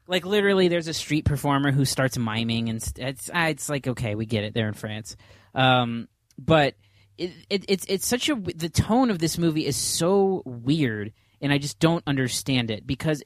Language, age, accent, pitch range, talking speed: English, 20-39, American, 115-155 Hz, 195 wpm